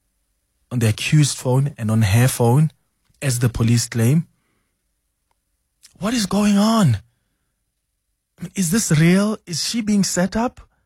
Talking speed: 135 wpm